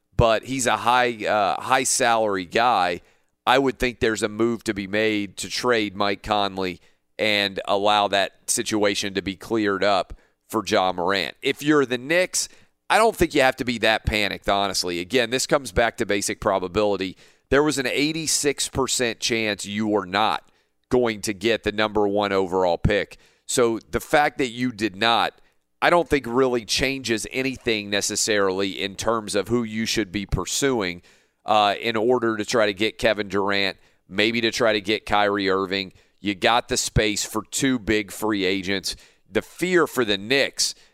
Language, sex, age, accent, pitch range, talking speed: English, male, 40-59, American, 100-120 Hz, 180 wpm